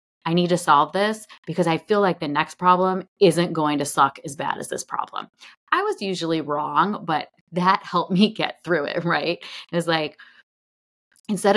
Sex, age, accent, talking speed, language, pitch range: female, 30-49, American, 190 wpm, English, 155-195 Hz